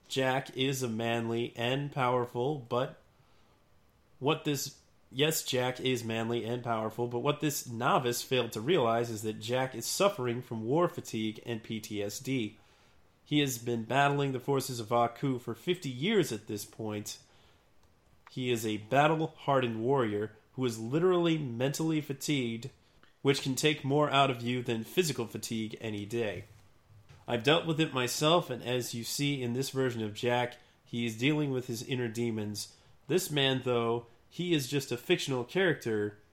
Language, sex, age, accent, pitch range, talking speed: English, male, 30-49, American, 110-135 Hz, 160 wpm